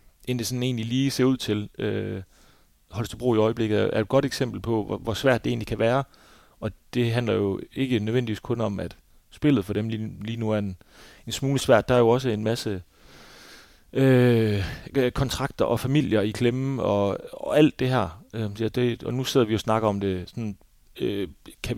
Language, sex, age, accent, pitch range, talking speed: Danish, male, 30-49, native, 100-120 Hz, 210 wpm